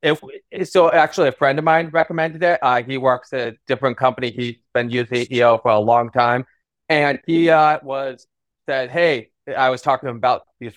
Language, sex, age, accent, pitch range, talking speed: English, male, 30-49, American, 125-165 Hz, 205 wpm